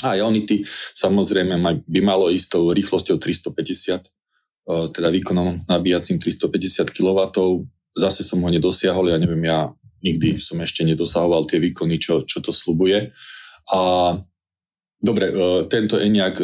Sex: male